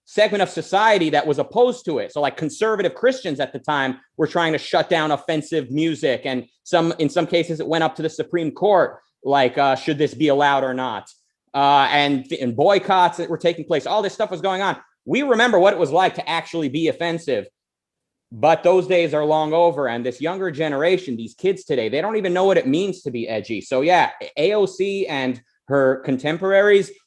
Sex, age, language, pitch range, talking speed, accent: male, 30-49, English, 140-190 Hz, 215 wpm, American